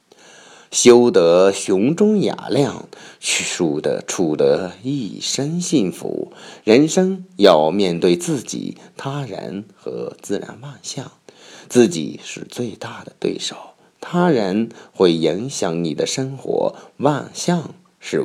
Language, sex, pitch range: Chinese, male, 110-170 Hz